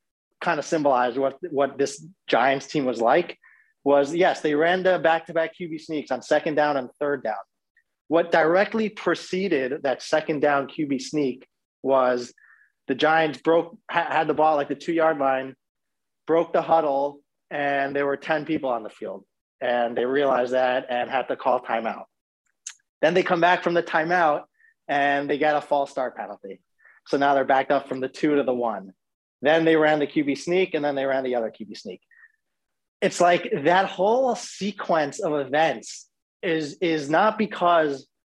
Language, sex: English, male